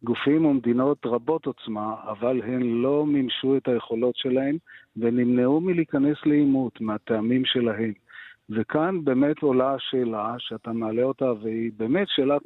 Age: 40-59